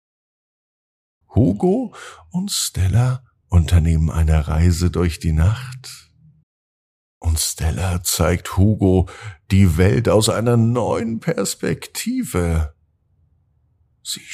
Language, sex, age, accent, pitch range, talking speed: German, male, 50-69, German, 85-110 Hz, 85 wpm